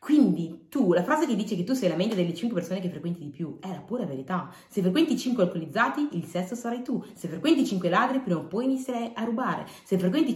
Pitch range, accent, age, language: 170-240 Hz, native, 20-39, Italian